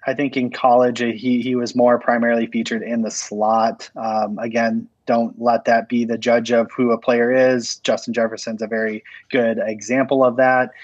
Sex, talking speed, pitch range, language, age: male, 190 wpm, 115-130 Hz, English, 20-39